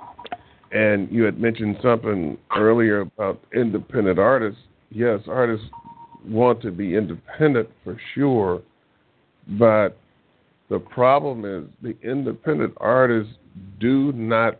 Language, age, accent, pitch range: English, 50-69, American, 95-115 Hz